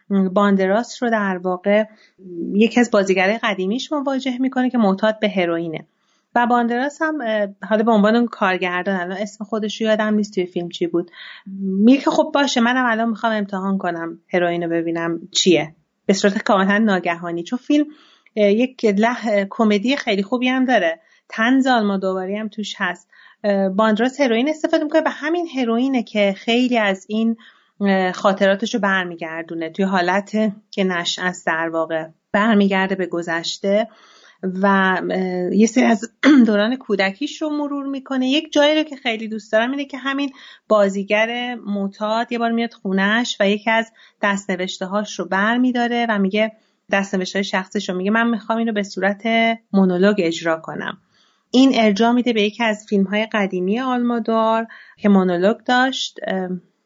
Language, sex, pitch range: Persian, female, 195-240 Hz